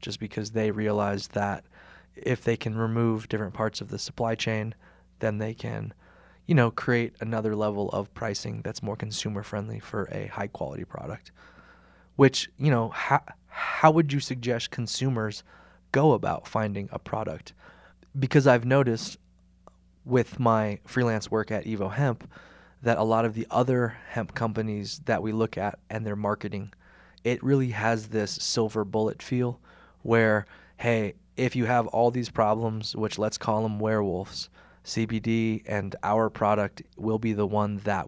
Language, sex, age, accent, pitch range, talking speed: English, male, 20-39, American, 105-120 Hz, 160 wpm